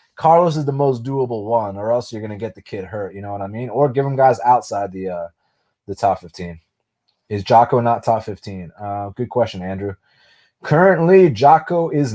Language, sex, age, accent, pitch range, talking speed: English, male, 20-39, American, 100-125 Hz, 205 wpm